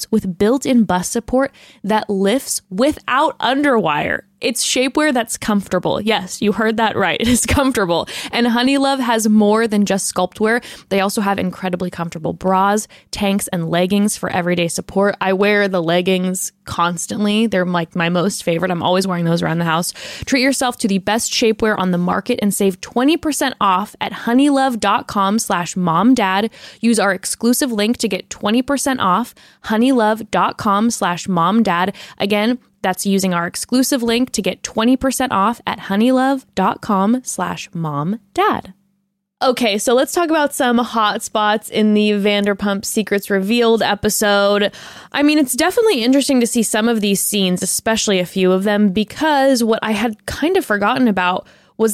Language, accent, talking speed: English, American, 165 wpm